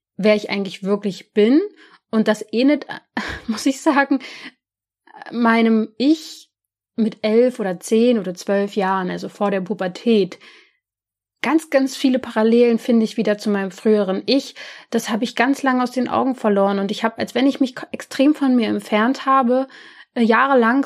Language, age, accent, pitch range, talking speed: German, 30-49, German, 200-255 Hz, 165 wpm